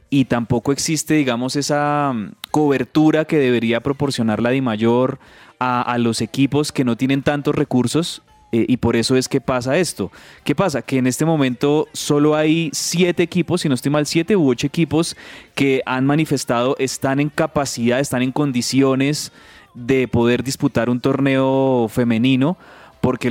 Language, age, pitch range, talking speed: Spanish, 20-39, 120-150 Hz, 160 wpm